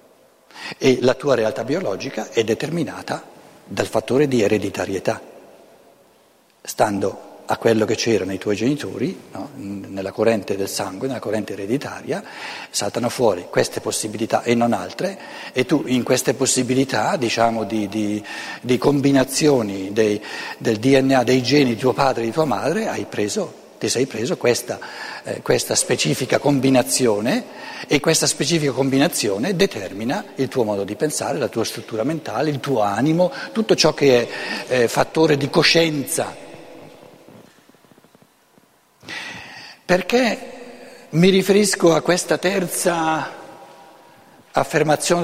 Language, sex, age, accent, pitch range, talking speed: Italian, male, 60-79, native, 115-165 Hz, 130 wpm